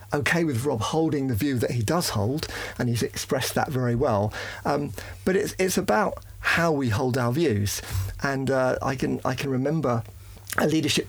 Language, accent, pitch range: English, British, 105-140 Hz